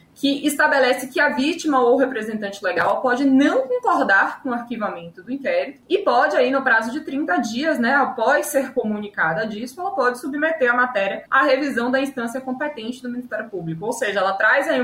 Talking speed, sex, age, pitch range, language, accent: 195 wpm, female, 20-39, 200-275 Hz, Portuguese, Brazilian